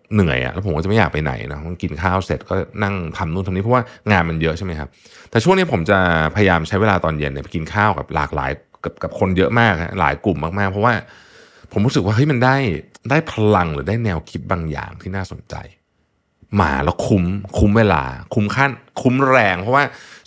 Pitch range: 80-110 Hz